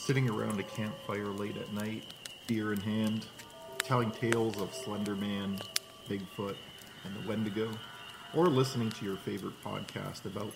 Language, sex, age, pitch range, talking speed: English, male, 40-59, 110-130 Hz, 140 wpm